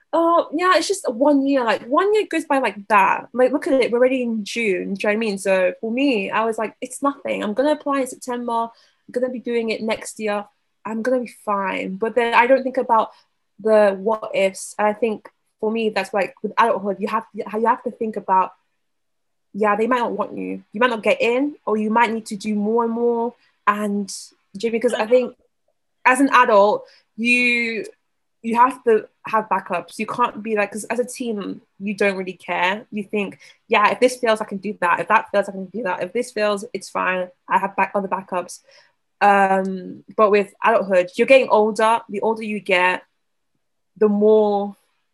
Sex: female